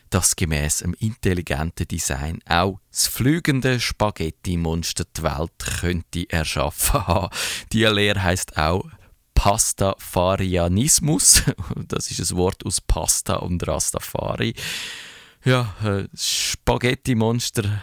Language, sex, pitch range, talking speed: German, male, 90-110 Hz, 105 wpm